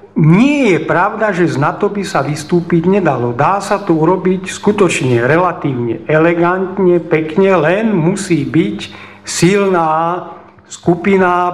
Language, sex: English, male